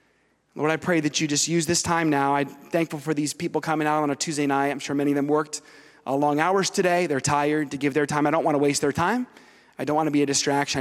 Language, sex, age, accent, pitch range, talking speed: English, male, 30-49, American, 155-215 Hz, 280 wpm